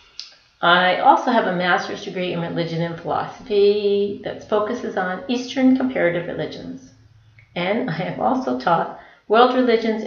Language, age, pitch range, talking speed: English, 40-59, 175-210 Hz, 135 wpm